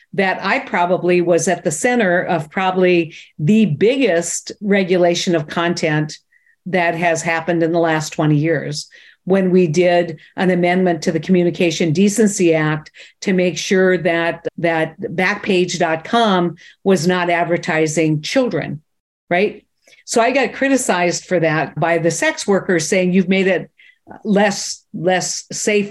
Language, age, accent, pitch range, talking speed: English, 50-69, American, 165-200 Hz, 140 wpm